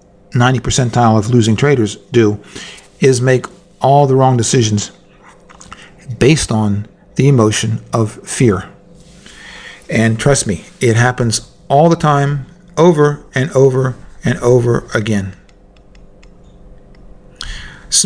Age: 50-69